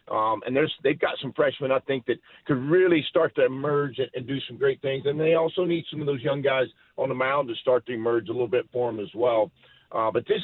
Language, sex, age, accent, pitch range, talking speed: English, male, 50-69, American, 125-150 Hz, 270 wpm